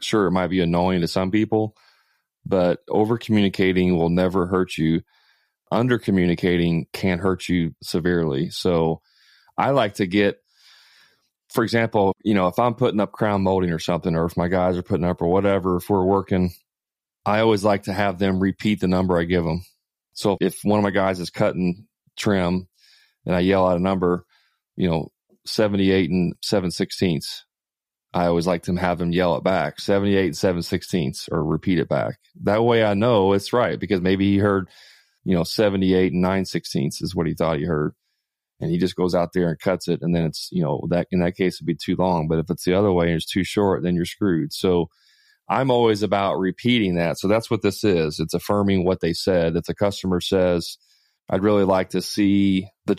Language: English